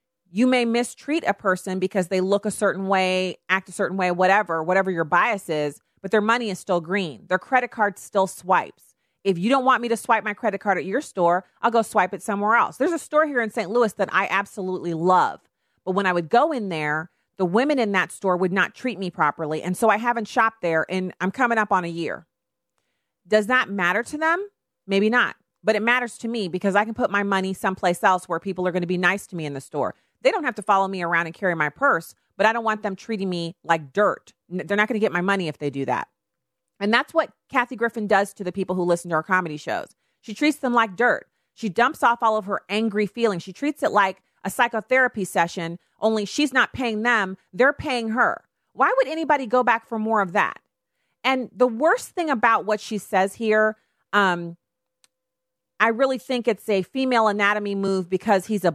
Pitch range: 185-235 Hz